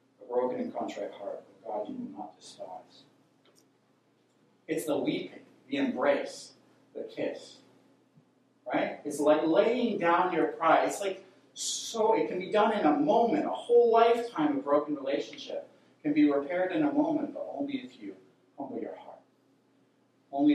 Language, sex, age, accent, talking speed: English, male, 40-59, American, 160 wpm